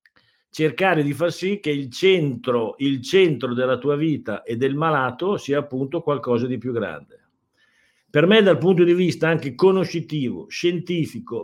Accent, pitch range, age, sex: native, 135-170 Hz, 50-69, male